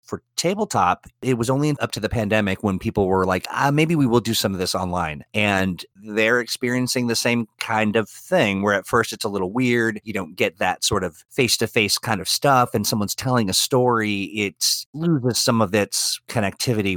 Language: English